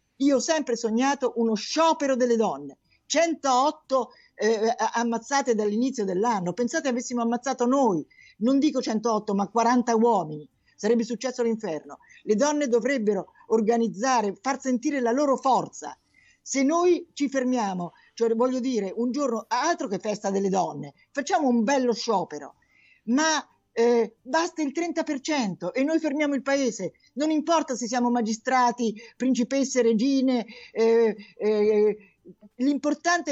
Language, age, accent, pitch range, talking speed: Italian, 50-69, native, 220-280 Hz, 130 wpm